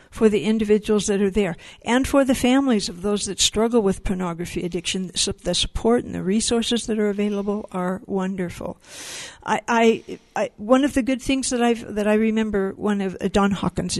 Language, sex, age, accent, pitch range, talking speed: English, female, 60-79, American, 200-245 Hz, 195 wpm